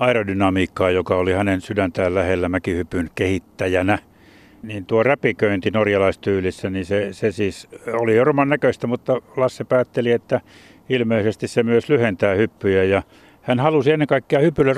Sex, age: male, 60-79